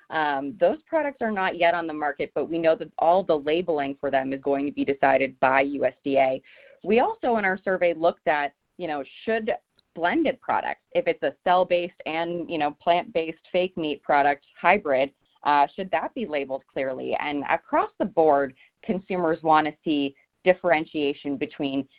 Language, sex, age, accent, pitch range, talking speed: English, female, 30-49, American, 145-185 Hz, 175 wpm